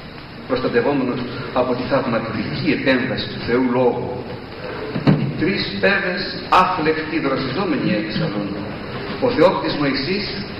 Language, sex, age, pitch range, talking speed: Greek, male, 50-69, 120-165 Hz, 95 wpm